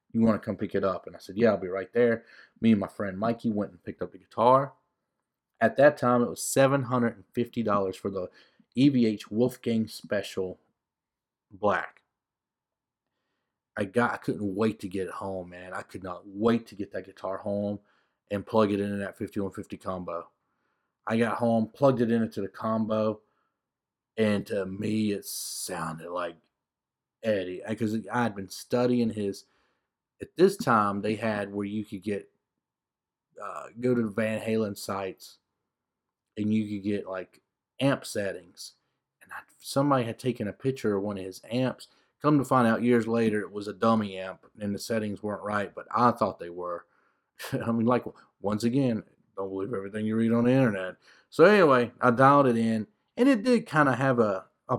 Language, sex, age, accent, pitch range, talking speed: English, male, 30-49, American, 100-120 Hz, 185 wpm